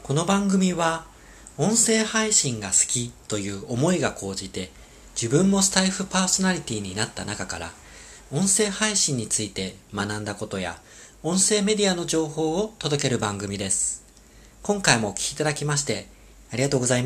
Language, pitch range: Japanese, 110-175 Hz